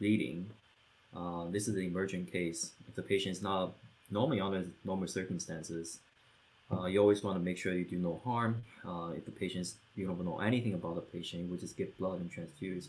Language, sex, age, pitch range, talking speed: English, male, 20-39, 85-100 Hz, 205 wpm